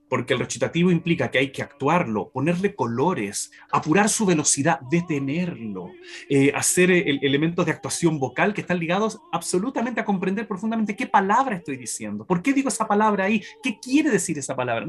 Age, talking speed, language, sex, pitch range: 30-49, 175 wpm, Spanish, male, 130-185 Hz